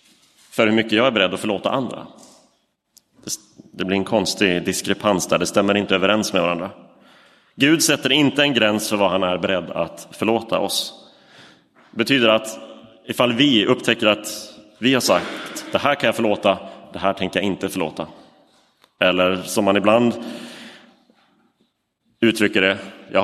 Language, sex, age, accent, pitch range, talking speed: Swedish, male, 30-49, native, 95-115 Hz, 160 wpm